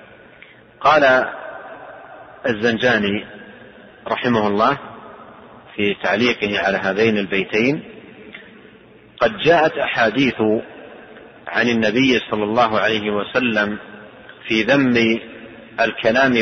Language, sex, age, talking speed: Arabic, male, 40-59, 75 wpm